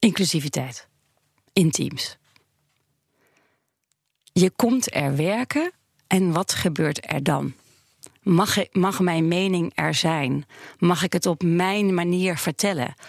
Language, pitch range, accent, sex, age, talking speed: Dutch, 175-210 Hz, Dutch, female, 40-59, 115 wpm